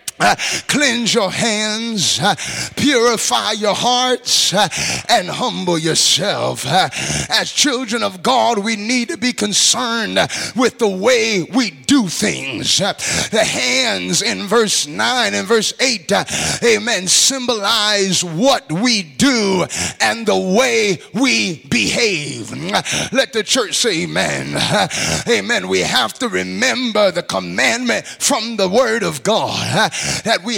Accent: American